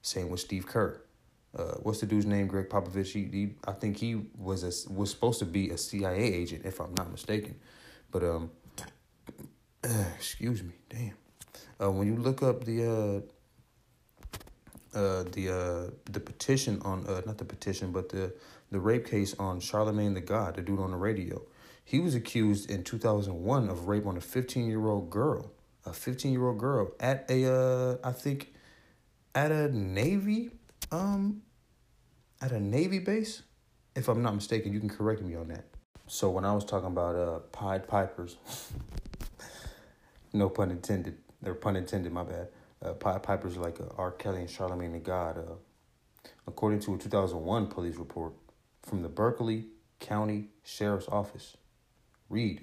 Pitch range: 95-115 Hz